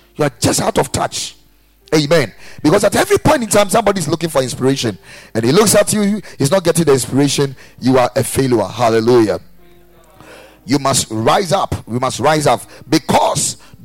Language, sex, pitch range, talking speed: English, male, 130-175 Hz, 175 wpm